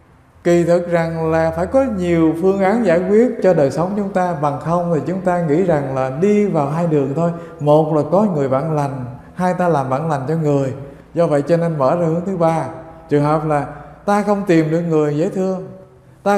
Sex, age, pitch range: male, 20-39, 140-185 Hz